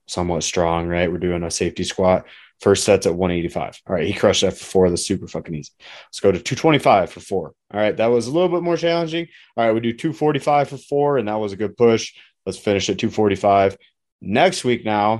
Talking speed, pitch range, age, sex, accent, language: 230 wpm, 95-125 Hz, 20-39, male, American, English